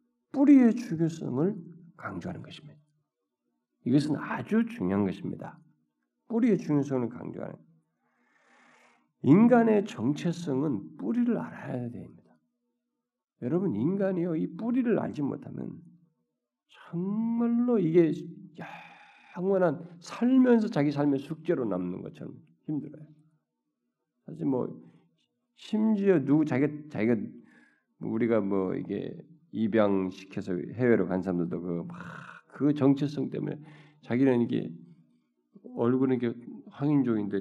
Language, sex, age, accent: Korean, male, 50-69, native